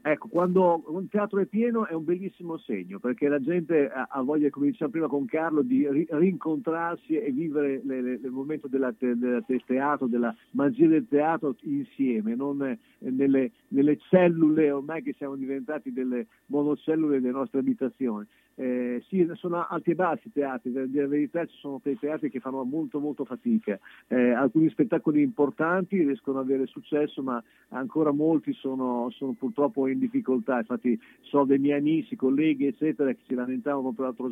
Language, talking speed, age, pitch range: Italian, 175 wpm, 50-69, 130-165 Hz